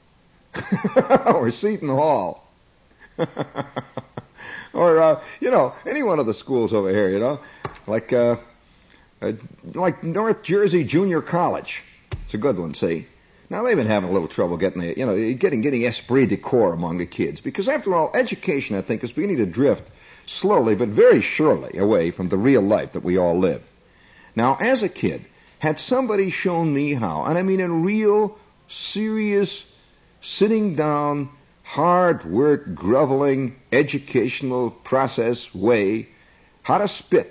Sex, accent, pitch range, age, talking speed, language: male, American, 120-195 Hz, 60-79, 155 wpm, English